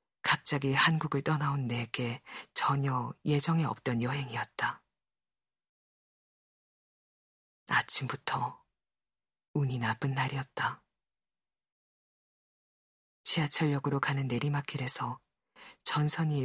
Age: 40-59